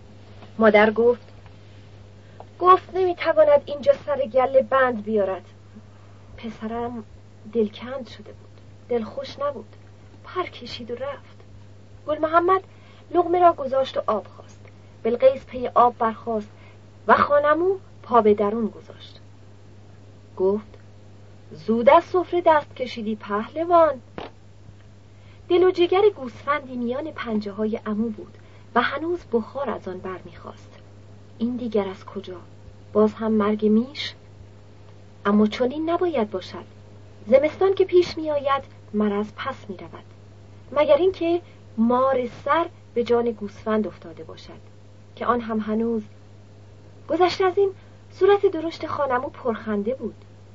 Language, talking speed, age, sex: Persian, 120 wpm, 40-59, female